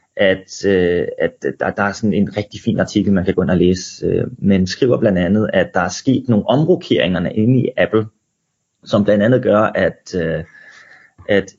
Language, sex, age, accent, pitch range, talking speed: Danish, male, 30-49, native, 100-130 Hz, 200 wpm